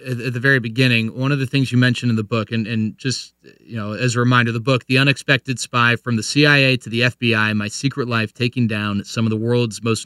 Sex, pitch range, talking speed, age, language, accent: male, 115-150 Hz, 250 wpm, 30-49, English, American